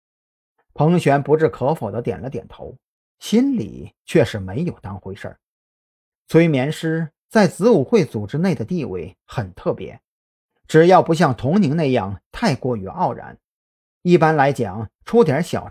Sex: male